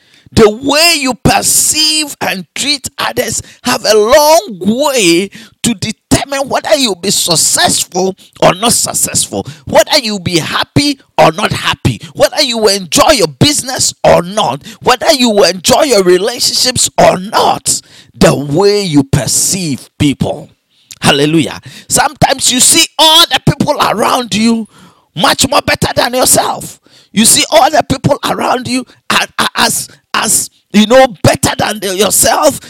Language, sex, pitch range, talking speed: English, male, 200-285 Hz, 140 wpm